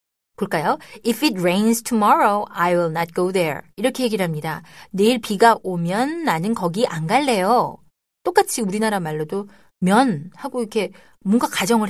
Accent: native